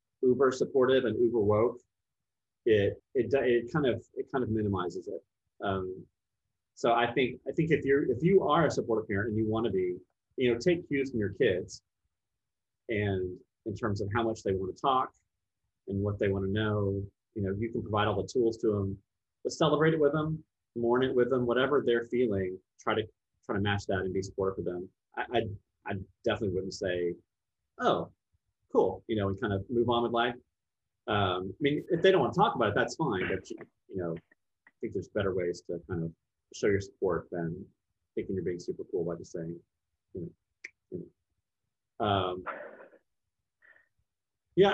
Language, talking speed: English, 200 wpm